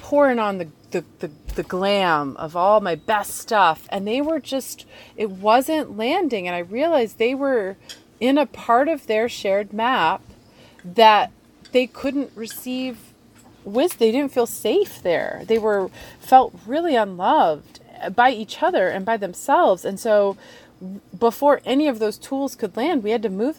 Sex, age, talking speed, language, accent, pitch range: female, 30-49, 165 wpm, English, American, 185-255 Hz